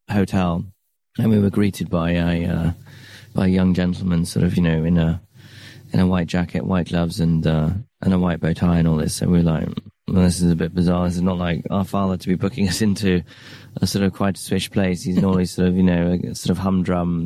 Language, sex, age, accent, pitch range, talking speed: English, male, 20-39, British, 85-95 Hz, 250 wpm